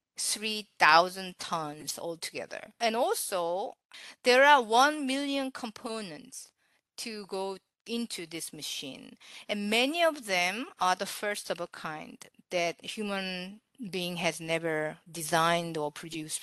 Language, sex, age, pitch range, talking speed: English, female, 40-59, 175-230 Hz, 120 wpm